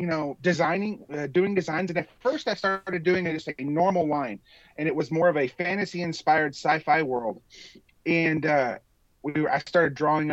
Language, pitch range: English, 145-180 Hz